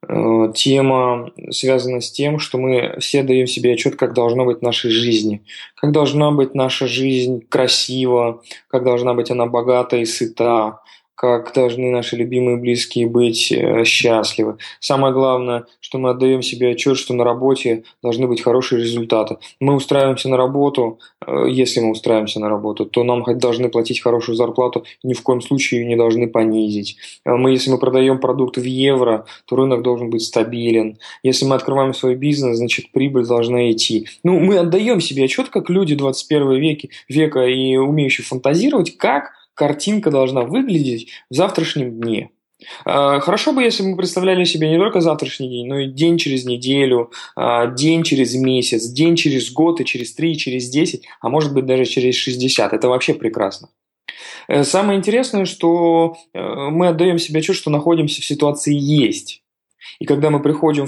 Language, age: Russian, 20-39